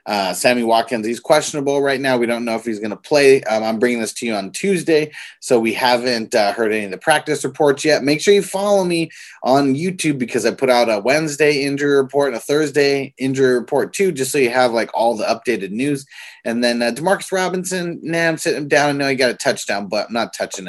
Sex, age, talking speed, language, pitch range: male, 20-39, 240 wpm, English, 120-155 Hz